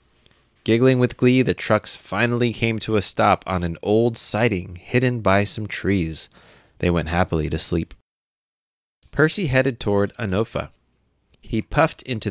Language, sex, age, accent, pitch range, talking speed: English, male, 30-49, American, 90-145 Hz, 145 wpm